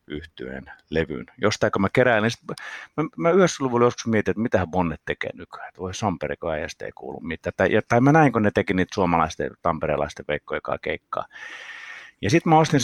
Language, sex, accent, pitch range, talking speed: Finnish, male, native, 85-130 Hz, 200 wpm